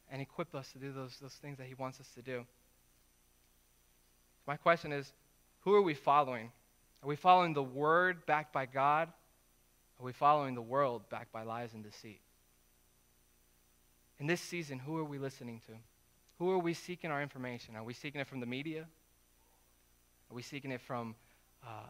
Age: 20-39